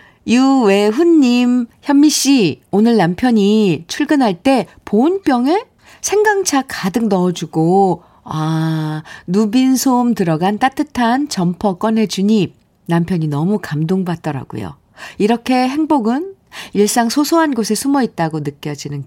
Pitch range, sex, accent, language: 160-260 Hz, female, native, Korean